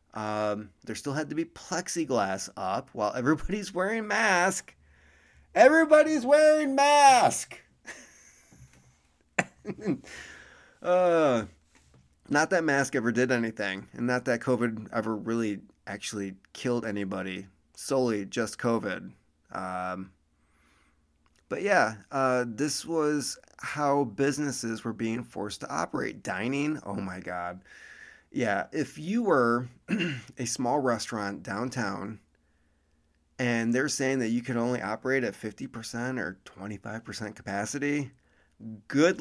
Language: English